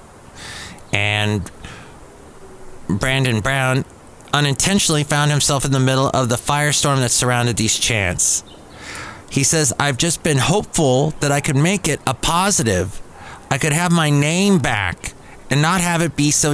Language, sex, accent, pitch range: English, male, American, 115-165 Hz